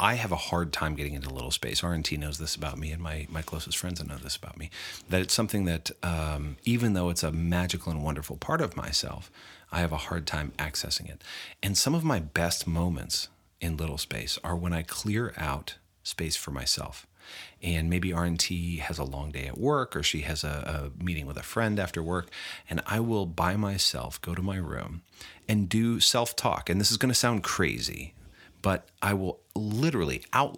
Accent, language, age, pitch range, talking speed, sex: American, English, 40-59, 80-95 Hz, 210 wpm, male